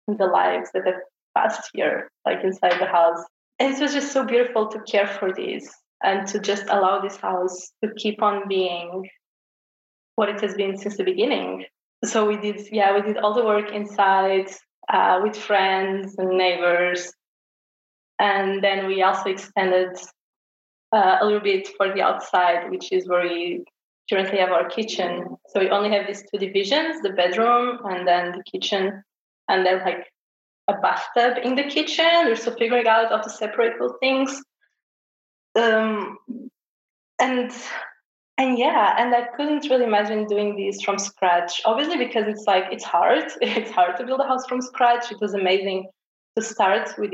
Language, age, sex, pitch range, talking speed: English, 20-39, female, 190-230 Hz, 170 wpm